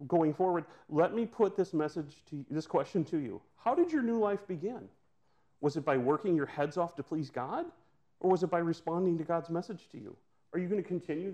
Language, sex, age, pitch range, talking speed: English, male, 40-59, 130-165 Hz, 230 wpm